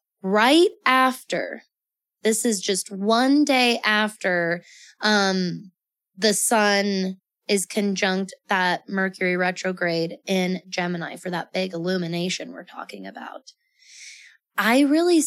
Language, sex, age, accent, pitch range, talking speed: English, female, 20-39, American, 175-220 Hz, 105 wpm